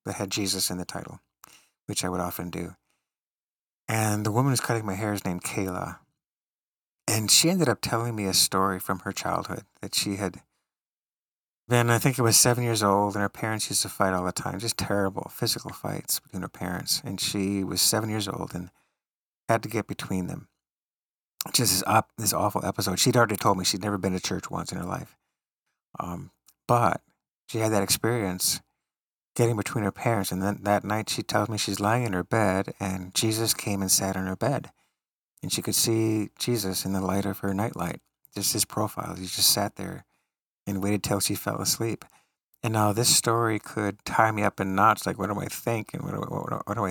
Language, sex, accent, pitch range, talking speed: English, male, American, 95-115 Hz, 210 wpm